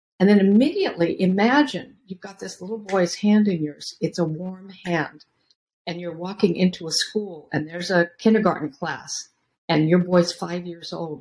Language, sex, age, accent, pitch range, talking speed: English, female, 50-69, American, 165-205 Hz, 175 wpm